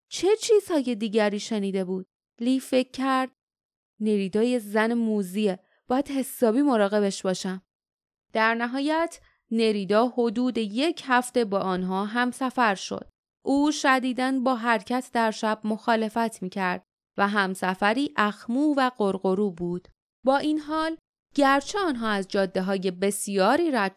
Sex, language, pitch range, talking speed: female, Persian, 205-270 Hz, 125 wpm